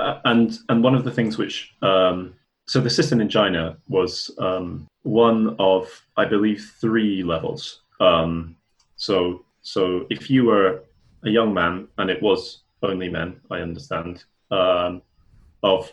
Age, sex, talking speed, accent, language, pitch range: 30-49, male, 145 wpm, British, English, 85-105 Hz